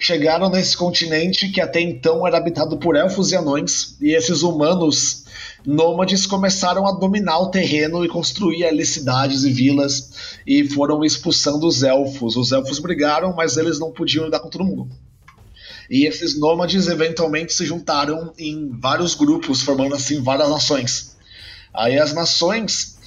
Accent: Brazilian